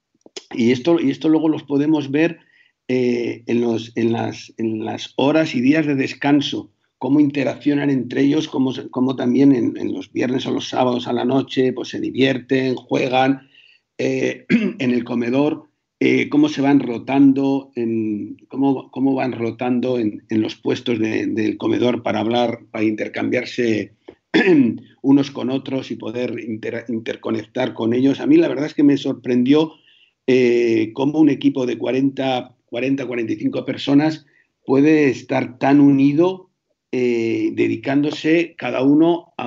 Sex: male